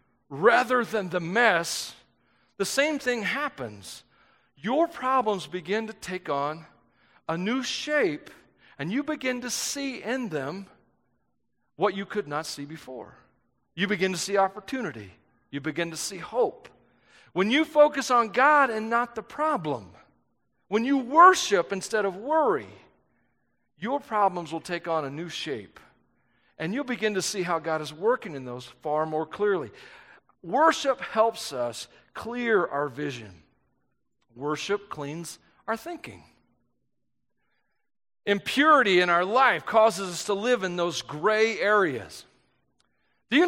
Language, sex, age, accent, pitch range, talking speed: English, male, 40-59, American, 160-245 Hz, 140 wpm